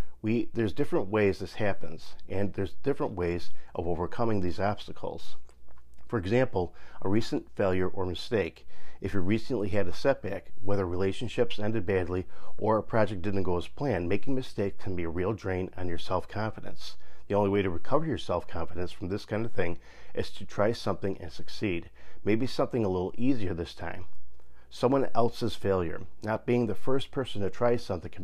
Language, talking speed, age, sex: English, 180 wpm, 40-59, male